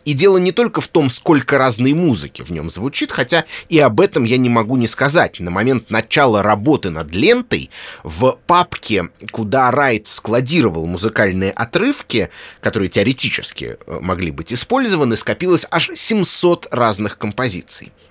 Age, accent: 30-49, native